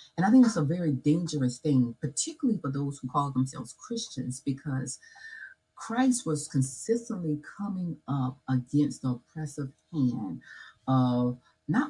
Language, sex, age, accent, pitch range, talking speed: English, female, 30-49, American, 130-180 Hz, 135 wpm